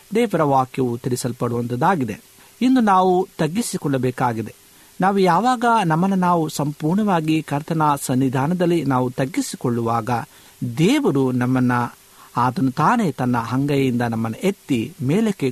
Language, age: Kannada, 50-69